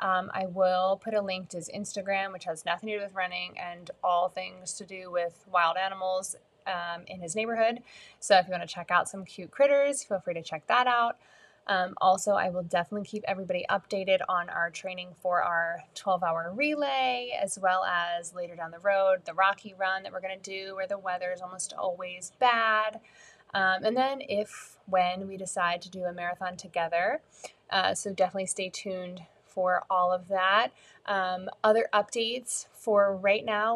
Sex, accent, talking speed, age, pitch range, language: female, American, 195 wpm, 20-39, 185-220 Hz, English